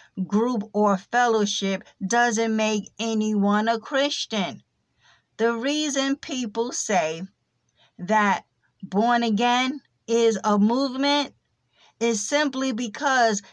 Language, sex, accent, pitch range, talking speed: English, female, American, 210-250 Hz, 95 wpm